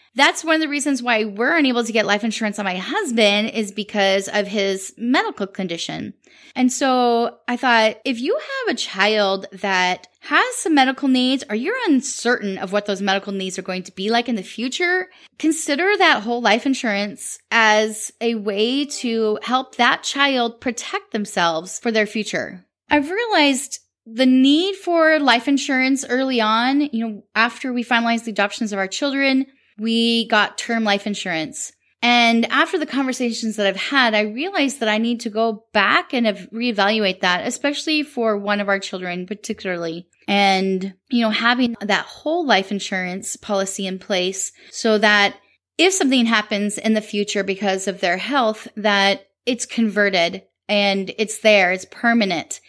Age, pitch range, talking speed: 10-29, 200-260 Hz, 170 wpm